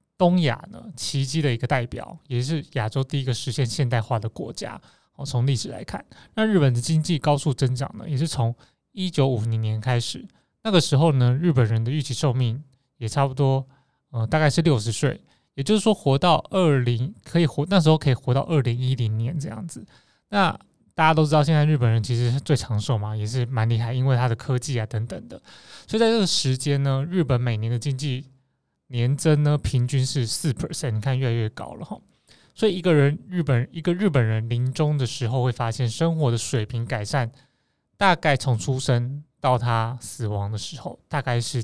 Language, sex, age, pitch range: Chinese, male, 20-39, 120-155 Hz